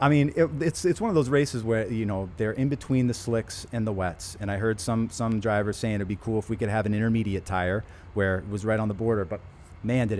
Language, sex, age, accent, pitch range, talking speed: English, male, 30-49, American, 100-125 Hz, 270 wpm